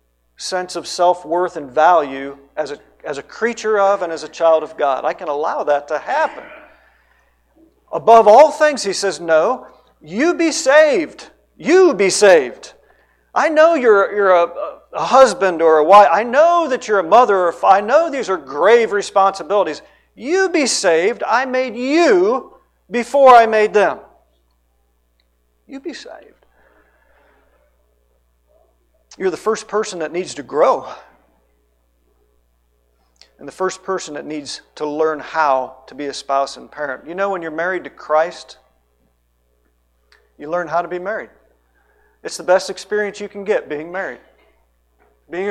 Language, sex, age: English, male, 50-69